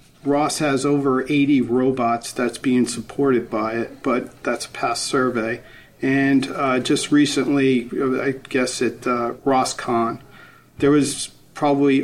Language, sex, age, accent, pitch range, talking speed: English, male, 50-69, American, 120-140 Hz, 135 wpm